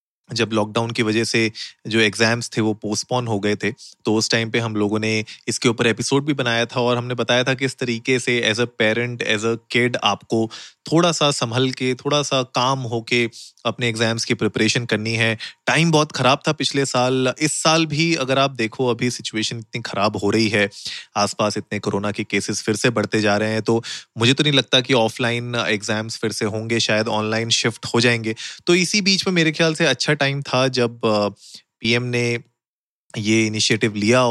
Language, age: Hindi, 30-49